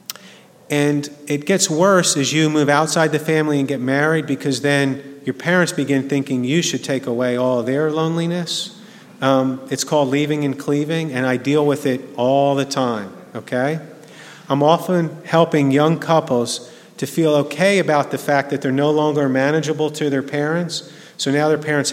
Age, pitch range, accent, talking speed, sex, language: 40-59, 130-160 Hz, American, 175 wpm, male, English